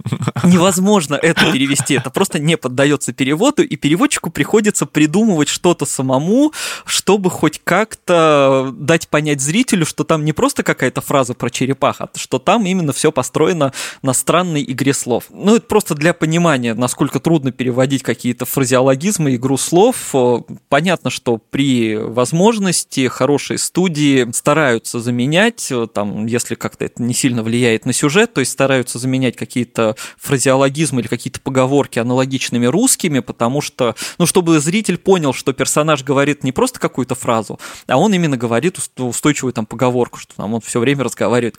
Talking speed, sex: 150 wpm, male